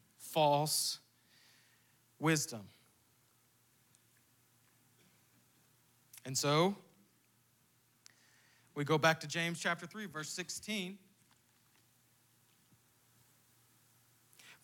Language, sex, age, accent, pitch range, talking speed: English, male, 30-49, American, 135-185 Hz, 55 wpm